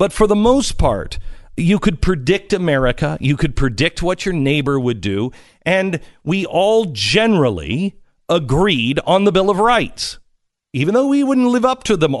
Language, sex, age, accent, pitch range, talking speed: English, male, 50-69, American, 140-225 Hz, 170 wpm